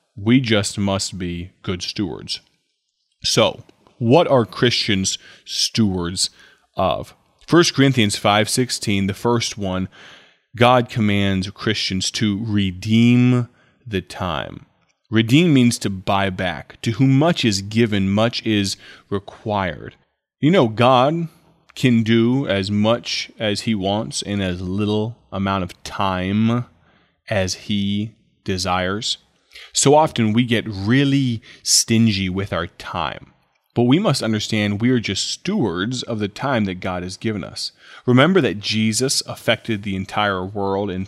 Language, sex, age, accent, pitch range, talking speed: English, male, 20-39, American, 95-120 Hz, 130 wpm